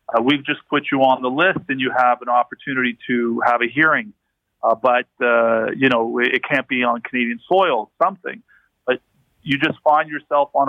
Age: 40-59